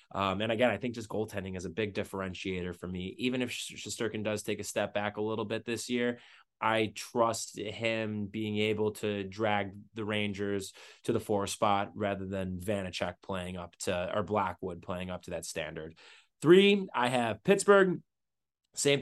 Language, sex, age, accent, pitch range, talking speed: English, male, 20-39, American, 100-120 Hz, 180 wpm